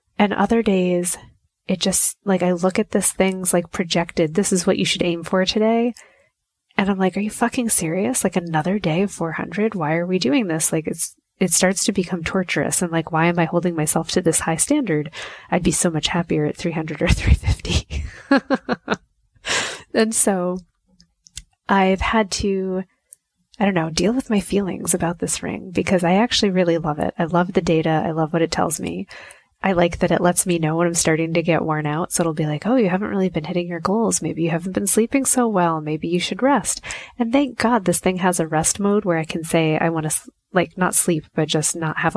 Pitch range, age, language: 165-200 Hz, 20-39, English